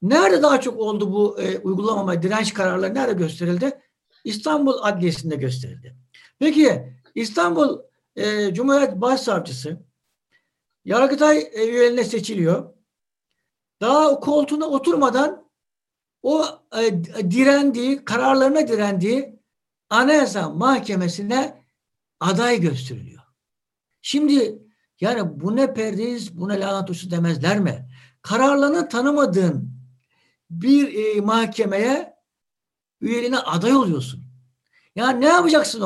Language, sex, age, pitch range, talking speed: Turkish, male, 60-79, 175-270 Hz, 95 wpm